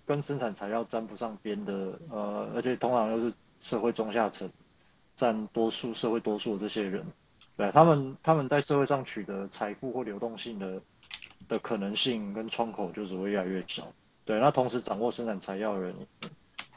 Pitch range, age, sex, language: 105-135 Hz, 20-39, male, Chinese